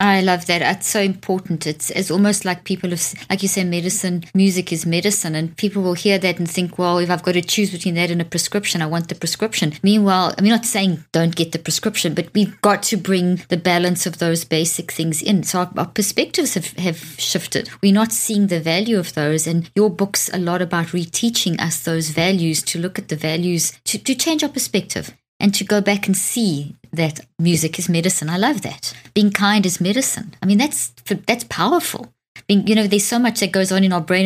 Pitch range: 165-200 Hz